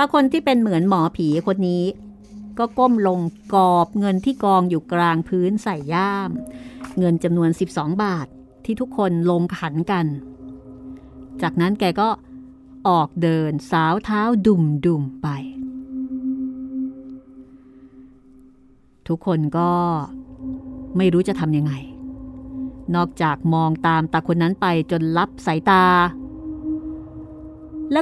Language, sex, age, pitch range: Thai, female, 30-49, 165-265 Hz